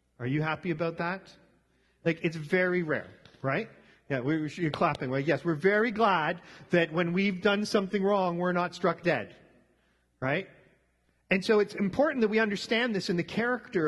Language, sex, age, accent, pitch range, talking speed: English, male, 40-59, American, 155-205 Hz, 170 wpm